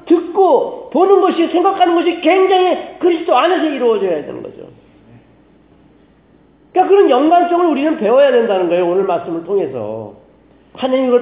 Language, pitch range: Korean, 235-350 Hz